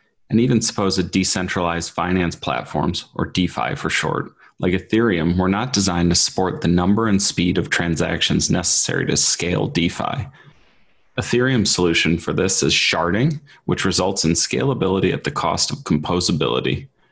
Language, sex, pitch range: English, male, 90-110 Hz